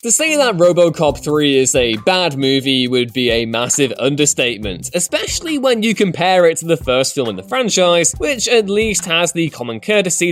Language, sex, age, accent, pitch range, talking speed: English, male, 20-39, British, 145-220 Hz, 190 wpm